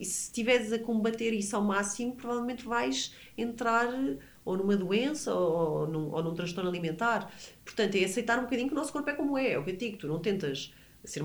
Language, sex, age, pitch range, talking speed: Portuguese, female, 30-49, 155-235 Hz, 215 wpm